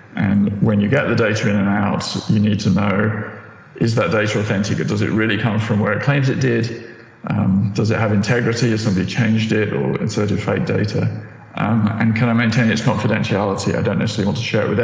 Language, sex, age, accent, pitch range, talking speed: English, male, 40-59, British, 100-115 Hz, 225 wpm